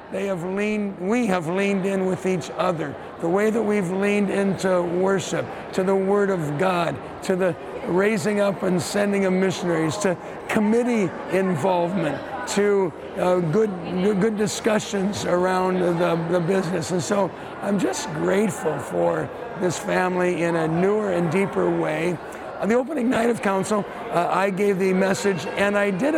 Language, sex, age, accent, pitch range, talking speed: English, male, 60-79, American, 180-205 Hz, 160 wpm